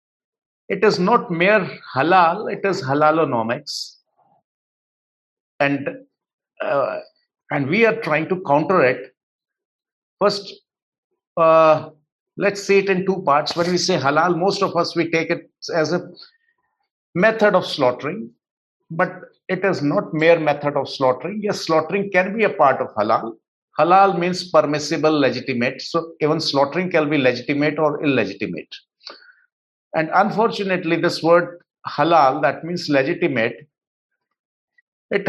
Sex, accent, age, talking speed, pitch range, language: male, Indian, 60-79, 130 wpm, 155-200 Hz, English